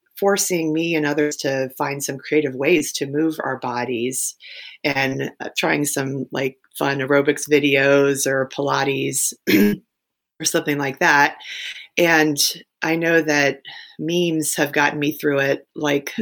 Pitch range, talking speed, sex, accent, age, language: 145-210 Hz, 135 wpm, female, American, 30-49, English